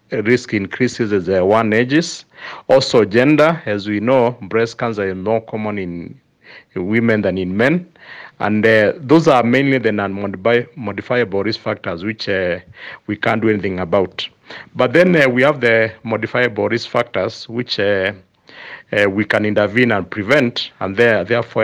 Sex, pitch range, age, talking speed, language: male, 100-125 Hz, 50-69, 155 wpm, English